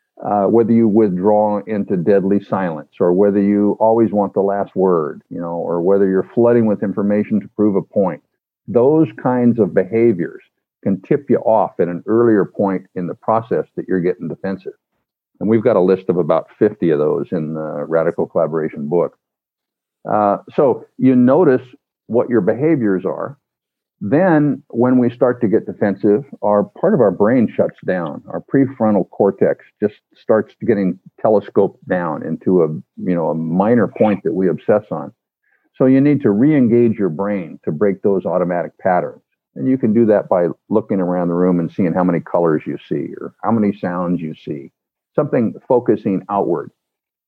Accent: American